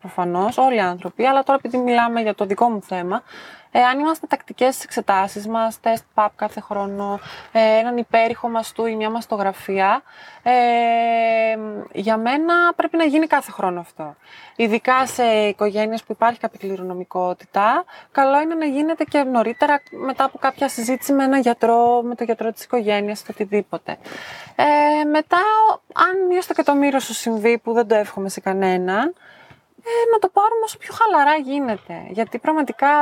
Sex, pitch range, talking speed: female, 215-315 Hz, 165 wpm